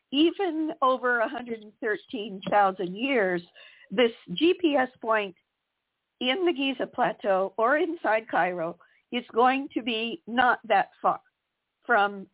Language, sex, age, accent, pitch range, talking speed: English, female, 50-69, American, 210-280 Hz, 105 wpm